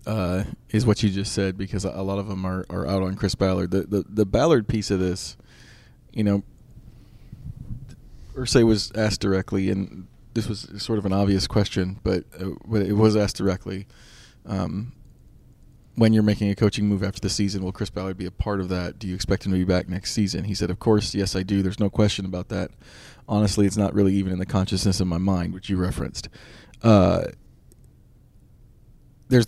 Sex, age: male, 20-39